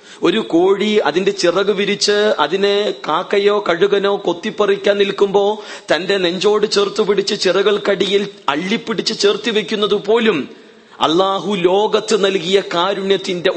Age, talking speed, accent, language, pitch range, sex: 30-49, 105 wpm, native, Malayalam, 145-195 Hz, male